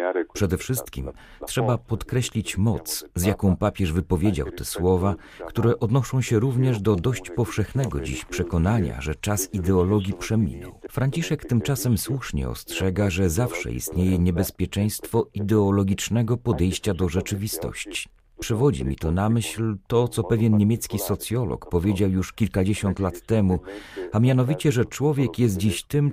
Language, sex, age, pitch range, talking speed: Polish, male, 40-59, 95-115 Hz, 135 wpm